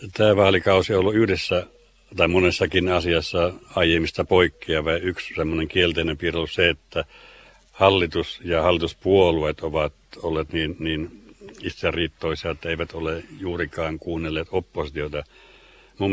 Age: 60-79